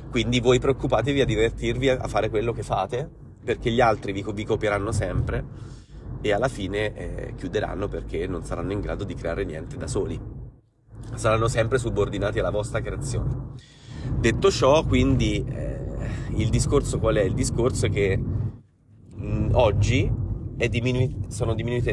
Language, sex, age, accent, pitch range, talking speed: Italian, male, 30-49, native, 105-125 Hz, 145 wpm